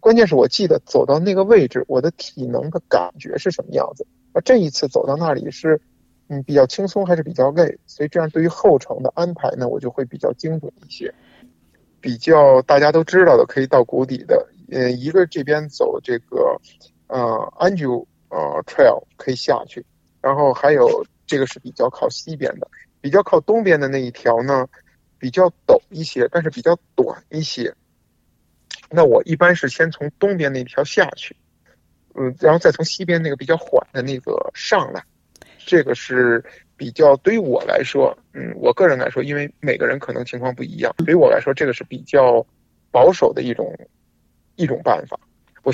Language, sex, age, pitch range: Chinese, male, 50-69, 130-195 Hz